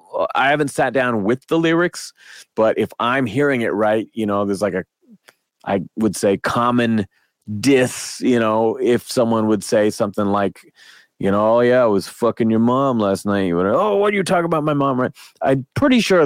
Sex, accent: male, American